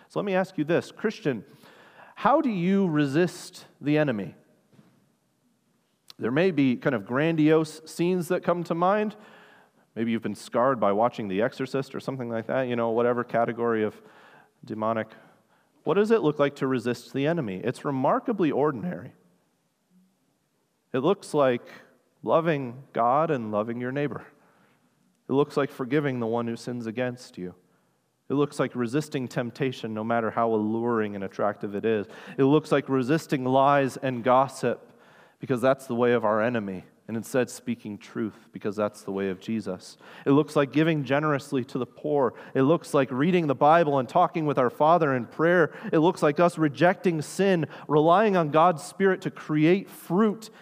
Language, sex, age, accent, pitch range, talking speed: English, male, 30-49, American, 120-180 Hz, 170 wpm